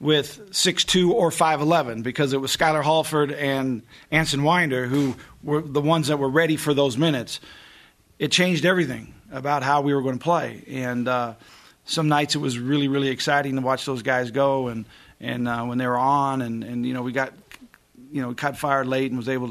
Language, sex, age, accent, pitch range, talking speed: English, male, 40-59, American, 130-150 Hz, 205 wpm